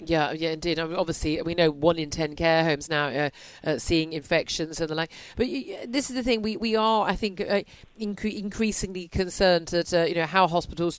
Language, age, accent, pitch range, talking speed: English, 40-59, British, 175-220 Hz, 230 wpm